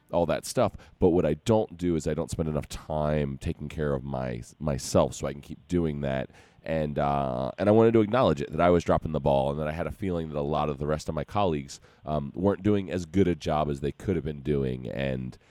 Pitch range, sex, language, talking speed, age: 70-90 Hz, male, English, 265 wpm, 30-49